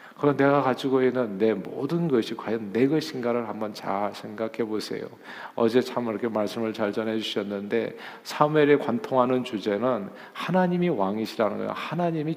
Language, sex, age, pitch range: Korean, male, 50-69, 105-140 Hz